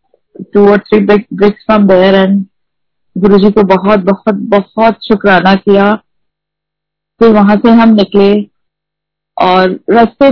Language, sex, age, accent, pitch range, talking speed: Hindi, female, 30-49, native, 190-230 Hz, 80 wpm